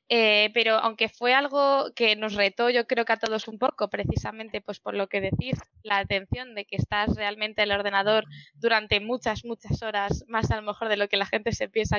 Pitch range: 205-235 Hz